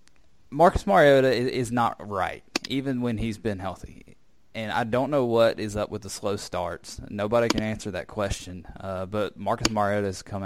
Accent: American